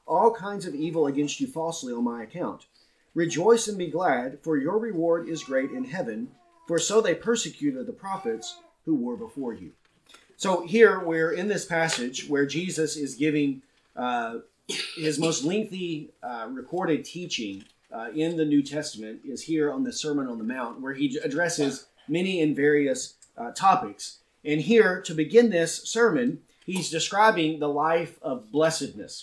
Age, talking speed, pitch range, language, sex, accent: 30-49, 165 wpm, 145-215 Hz, English, male, American